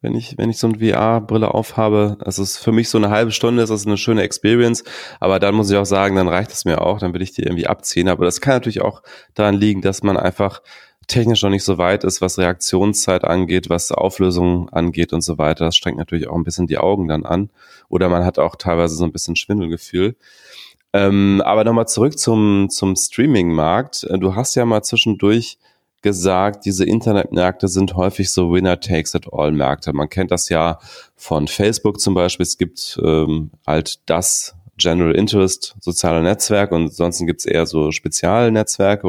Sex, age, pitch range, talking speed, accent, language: male, 30-49, 85-105 Hz, 200 wpm, German, German